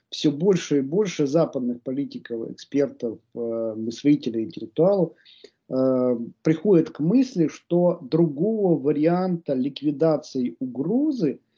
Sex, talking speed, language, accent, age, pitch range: male, 95 wpm, Russian, native, 50-69, 130-175 Hz